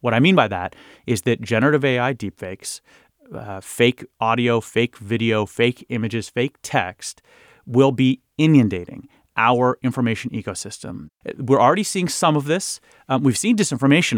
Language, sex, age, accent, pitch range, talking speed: English, male, 30-49, American, 115-145 Hz, 150 wpm